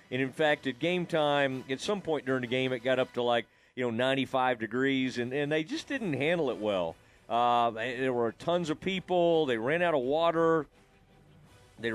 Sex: male